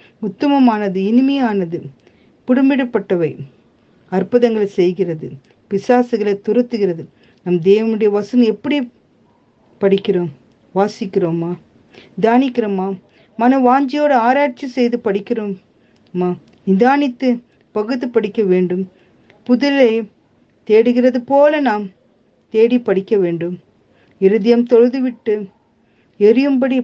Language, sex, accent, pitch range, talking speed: Tamil, female, native, 195-240 Hz, 75 wpm